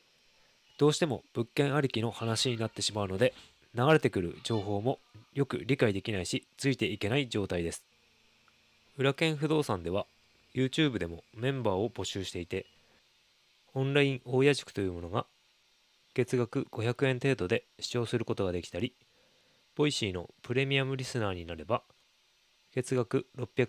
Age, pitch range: 20-39, 105-135 Hz